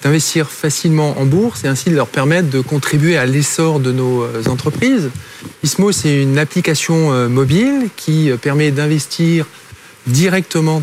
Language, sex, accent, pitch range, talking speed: French, male, French, 135-175 Hz, 140 wpm